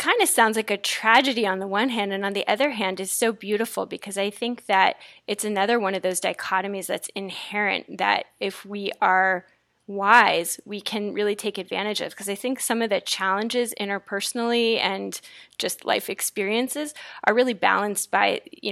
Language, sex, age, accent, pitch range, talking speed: English, female, 20-39, American, 195-235 Hz, 185 wpm